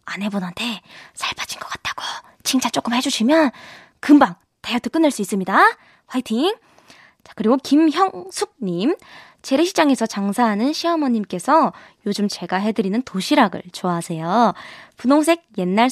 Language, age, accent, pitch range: Korean, 20-39, native, 195-295 Hz